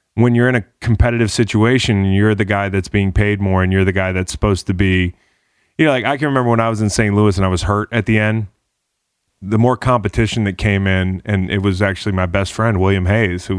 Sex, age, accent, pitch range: male, 20-39, American, 95-115 Hz